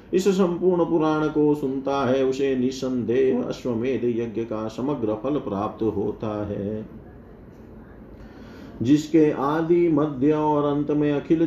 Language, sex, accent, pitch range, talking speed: Hindi, male, native, 125-150 Hz, 120 wpm